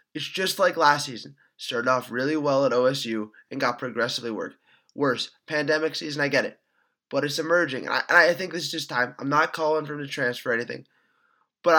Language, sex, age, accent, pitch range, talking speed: English, male, 20-39, American, 140-180 Hz, 215 wpm